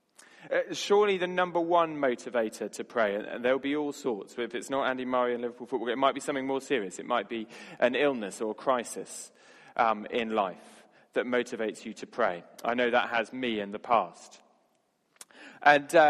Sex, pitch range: male, 115-150 Hz